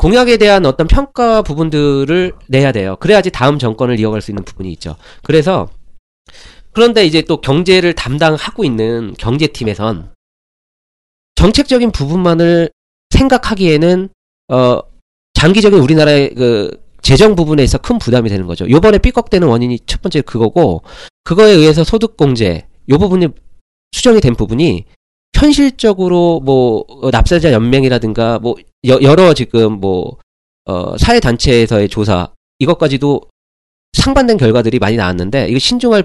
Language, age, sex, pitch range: Korean, 40-59, male, 105-170 Hz